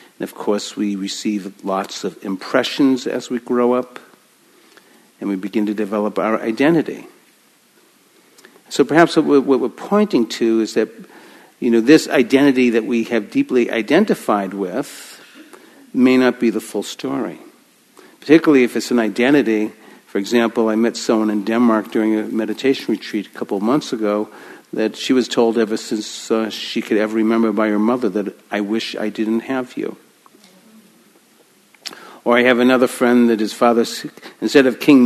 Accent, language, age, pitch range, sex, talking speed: American, English, 50-69, 110-135 Hz, male, 165 wpm